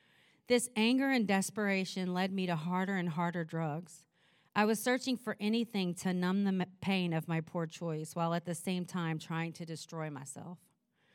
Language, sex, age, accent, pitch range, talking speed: English, female, 40-59, American, 175-215 Hz, 180 wpm